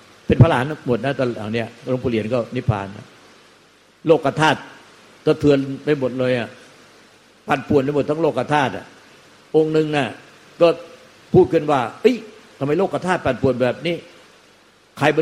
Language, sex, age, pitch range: Thai, male, 60-79, 120-145 Hz